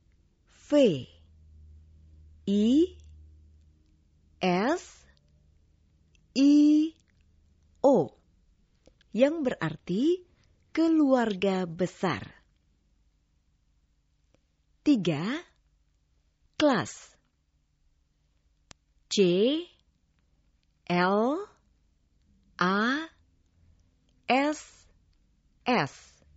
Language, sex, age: Indonesian, female, 40-59